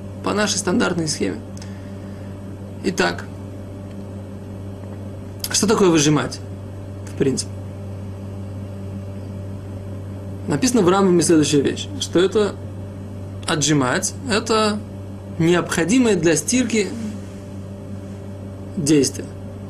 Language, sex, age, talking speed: Russian, male, 20-39, 70 wpm